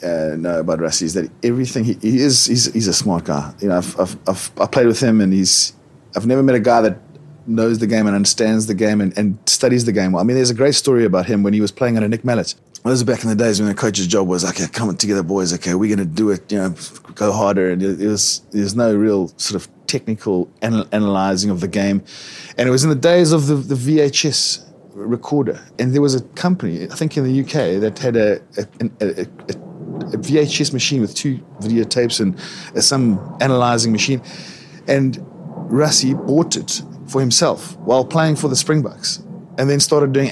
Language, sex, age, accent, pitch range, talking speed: English, male, 20-39, Australian, 105-145 Hz, 225 wpm